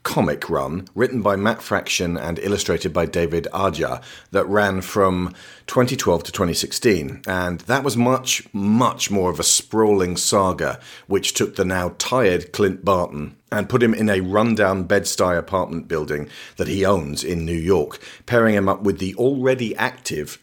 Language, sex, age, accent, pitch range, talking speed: English, male, 40-59, British, 85-115 Hz, 165 wpm